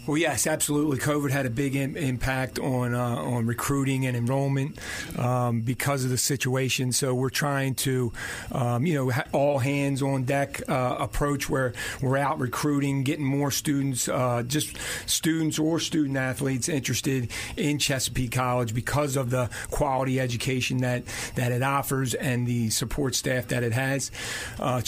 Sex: male